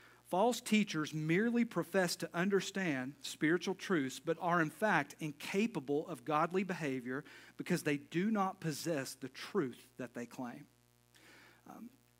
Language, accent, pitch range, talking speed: English, American, 140-175 Hz, 135 wpm